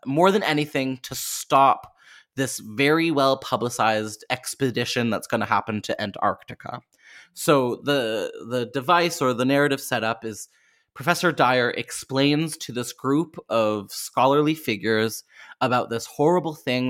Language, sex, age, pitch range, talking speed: English, male, 20-39, 115-155 Hz, 135 wpm